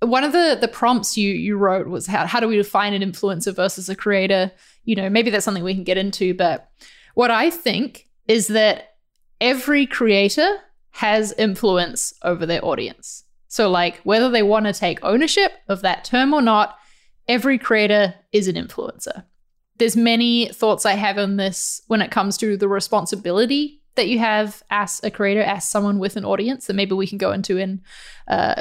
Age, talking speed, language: 20-39, 190 wpm, English